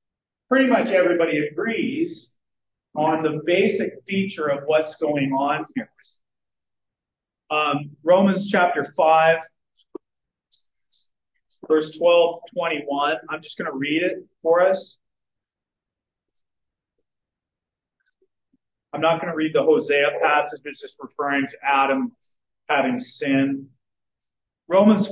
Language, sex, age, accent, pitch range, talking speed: English, male, 40-59, American, 140-185 Hz, 105 wpm